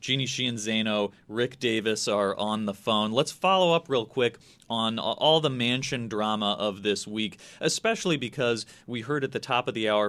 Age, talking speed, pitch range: 30-49, 185 wpm, 105-130 Hz